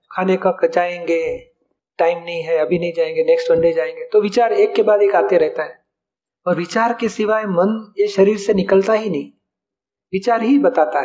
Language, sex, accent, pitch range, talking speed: Hindi, male, native, 185-245 Hz, 190 wpm